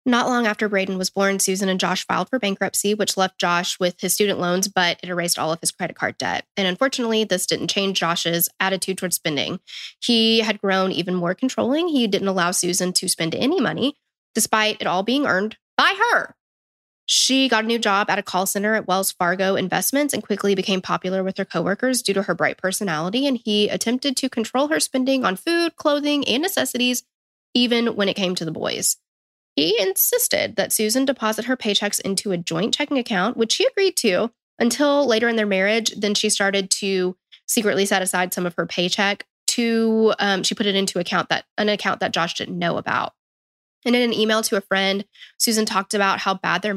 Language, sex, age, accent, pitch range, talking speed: English, female, 10-29, American, 190-235 Hz, 210 wpm